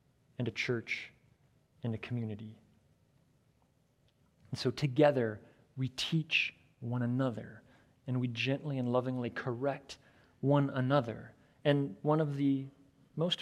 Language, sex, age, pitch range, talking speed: English, male, 30-49, 115-145 Hz, 115 wpm